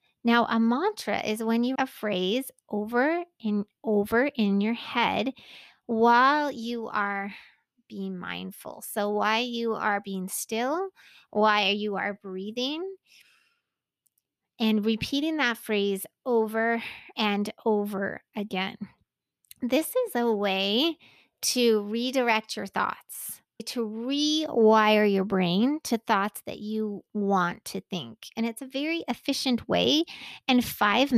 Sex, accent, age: female, American, 30-49